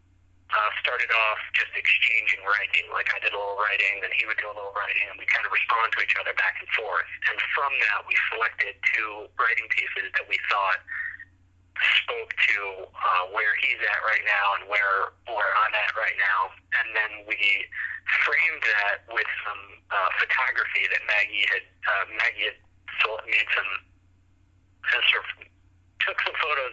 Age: 40-59